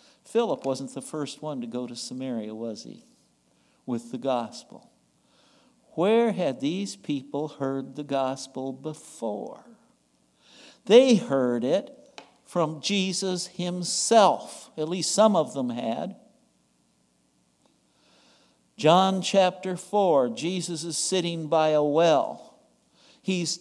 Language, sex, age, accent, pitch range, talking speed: English, male, 60-79, American, 135-200 Hz, 110 wpm